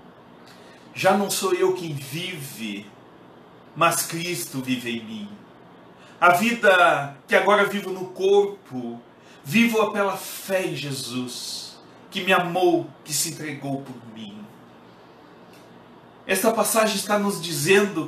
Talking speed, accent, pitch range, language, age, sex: 120 wpm, Brazilian, 135-200 Hz, Portuguese, 40-59, male